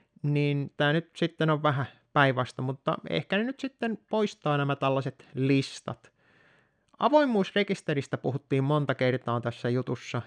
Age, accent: 30-49, native